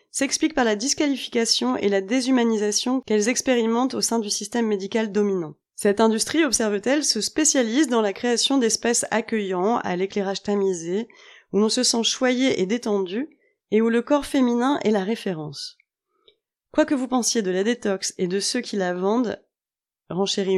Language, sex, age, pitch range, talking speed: French, female, 20-39, 205-260 Hz, 165 wpm